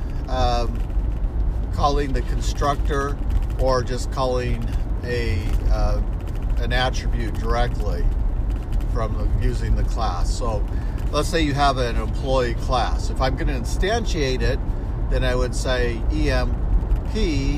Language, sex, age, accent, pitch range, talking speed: English, male, 50-69, American, 100-125 Hz, 125 wpm